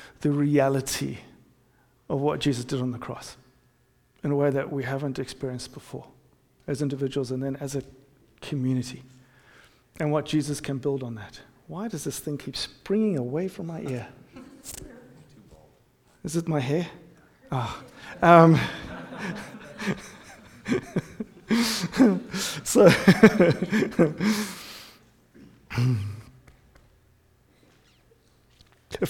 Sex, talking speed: male, 100 wpm